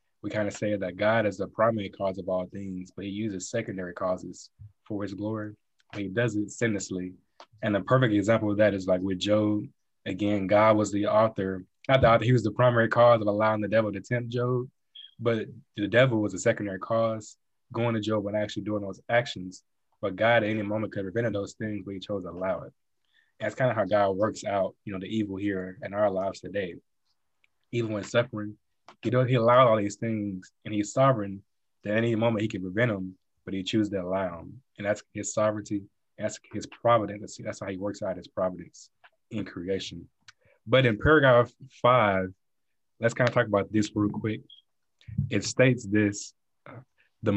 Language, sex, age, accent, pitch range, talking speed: English, male, 20-39, American, 95-115 Hz, 200 wpm